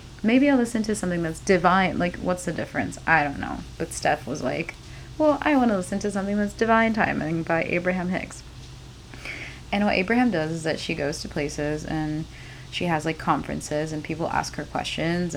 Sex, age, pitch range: female, 20-39, 150-200 Hz